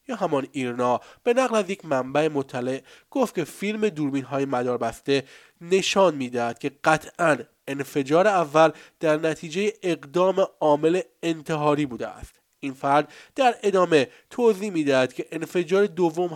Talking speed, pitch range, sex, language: 130 wpm, 135-175 Hz, male, Persian